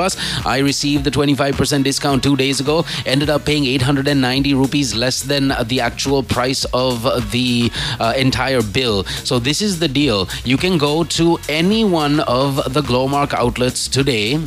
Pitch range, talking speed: 120-145 Hz, 160 wpm